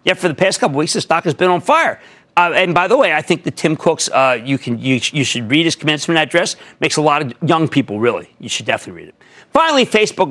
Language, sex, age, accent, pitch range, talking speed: English, male, 40-59, American, 140-195 Hz, 260 wpm